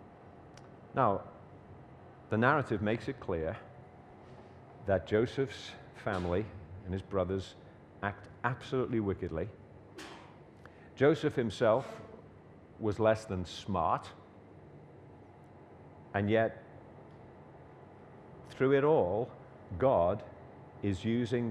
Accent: British